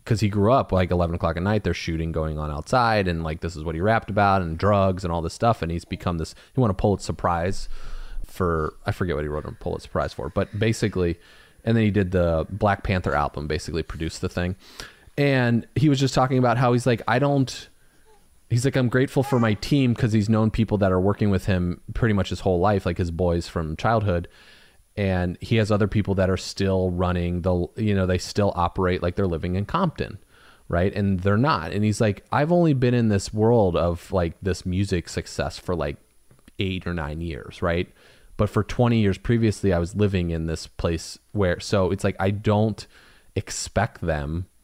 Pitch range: 85-110 Hz